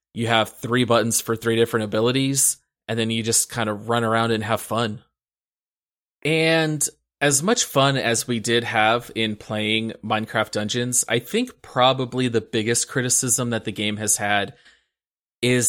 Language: English